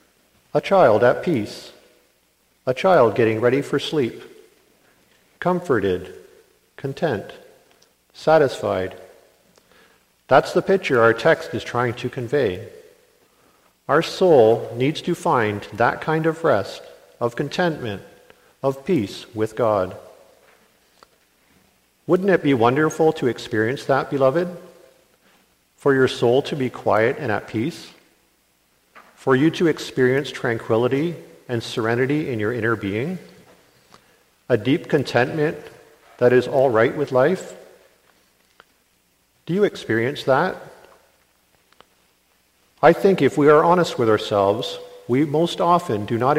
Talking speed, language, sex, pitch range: 115 wpm, English, male, 120-175 Hz